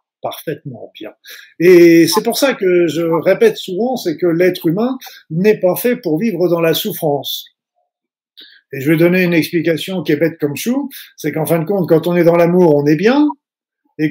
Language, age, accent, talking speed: French, 50-69, French, 200 wpm